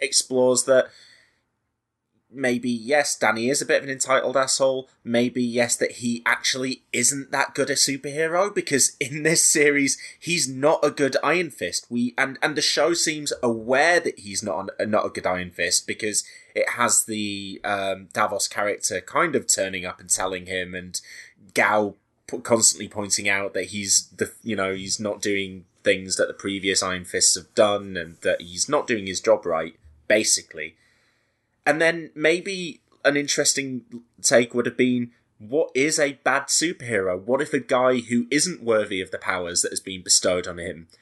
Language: English